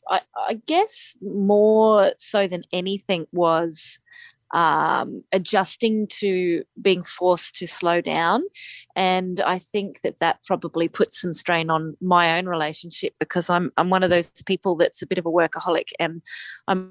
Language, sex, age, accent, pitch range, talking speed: English, female, 30-49, Australian, 175-205 Hz, 155 wpm